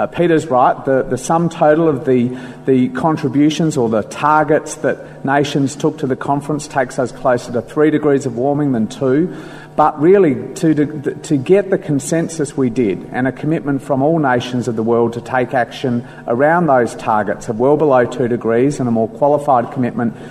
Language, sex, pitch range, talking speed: English, male, 125-150 Hz, 190 wpm